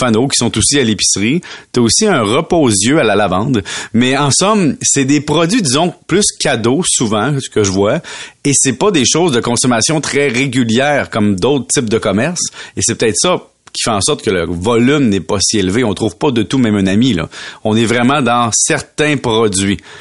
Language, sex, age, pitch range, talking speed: French, male, 30-49, 110-140 Hz, 220 wpm